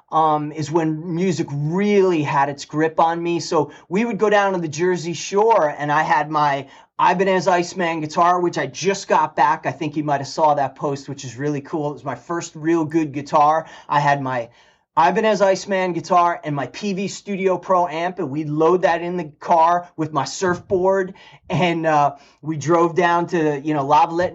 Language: English